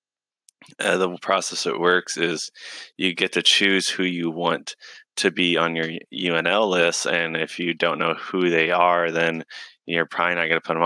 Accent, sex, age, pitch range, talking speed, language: American, male, 20-39, 80-90 Hz, 195 wpm, English